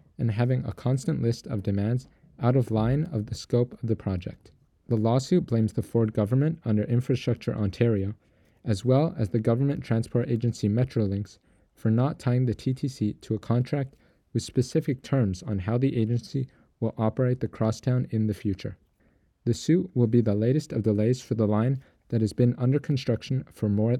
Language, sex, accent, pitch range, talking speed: English, male, American, 110-130 Hz, 185 wpm